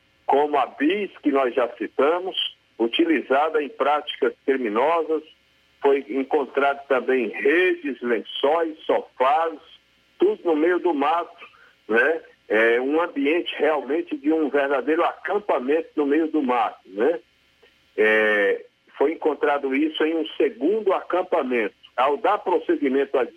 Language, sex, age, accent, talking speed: Portuguese, male, 60-79, Brazilian, 125 wpm